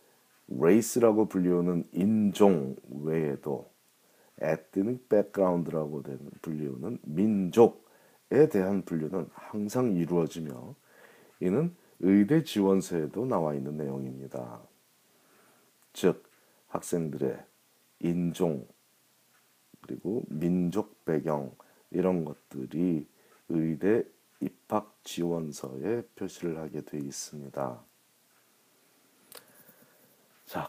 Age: 40-59